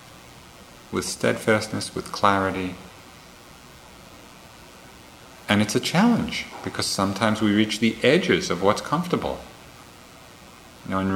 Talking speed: 95 wpm